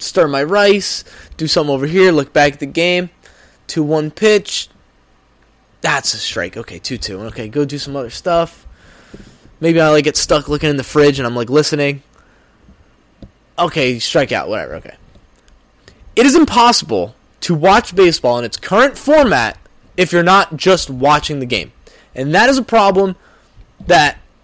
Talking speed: 160 wpm